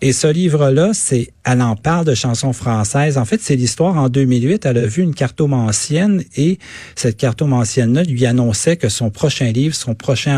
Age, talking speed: 40-59, 185 wpm